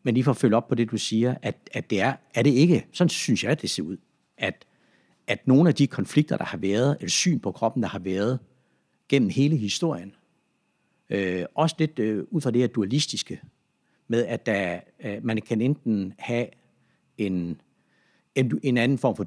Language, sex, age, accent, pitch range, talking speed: Danish, male, 60-79, native, 105-135 Hz, 200 wpm